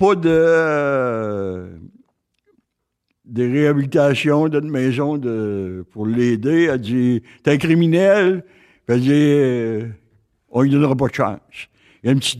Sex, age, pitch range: male, 60-79, 110-145 Hz